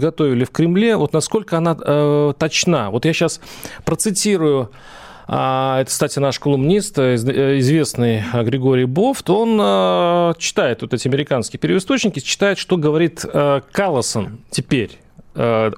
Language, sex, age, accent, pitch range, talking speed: Russian, male, 40-59, native, 130-175 Hz, 125 wpm